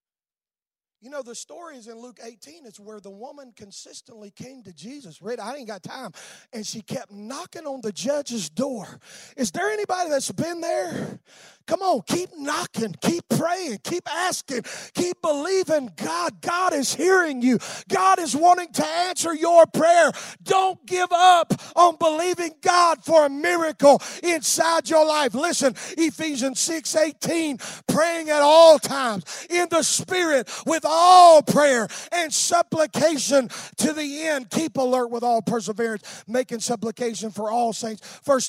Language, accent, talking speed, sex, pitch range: English, American, 155 wpm, male, 225-325 Hz